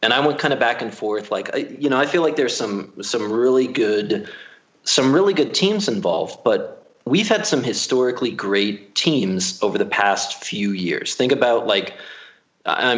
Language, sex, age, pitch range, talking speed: English, male, 30-49, 100-145 Hz, 185 wpm